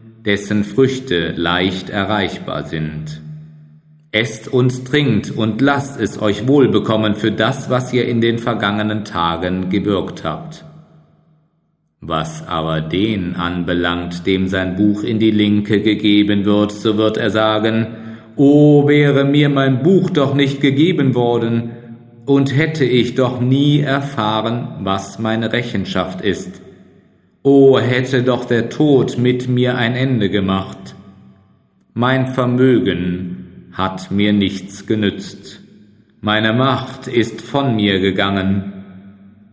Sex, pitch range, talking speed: male, 95-130 Hz, 125 wpm